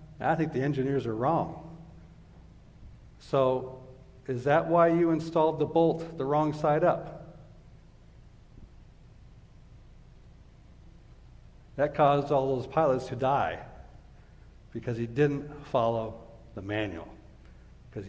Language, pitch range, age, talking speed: English, 110-140 Hz, 60-79, 105 wpm